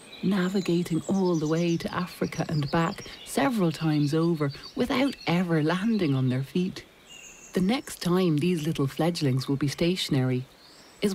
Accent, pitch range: Irish, 145-190 Hz